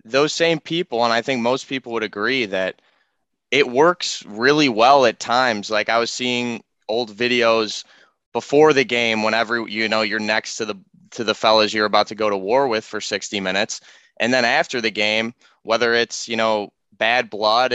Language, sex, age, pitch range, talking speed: English, male, 20-39, 110-125 Hz, 195 wpm